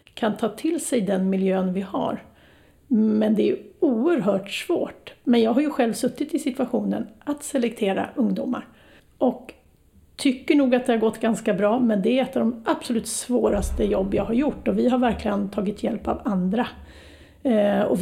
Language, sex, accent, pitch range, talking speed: Swedish, female, native, 210-255 Hz, 180 wpm